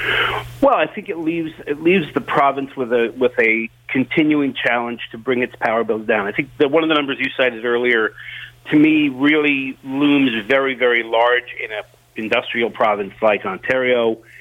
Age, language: 40-59, English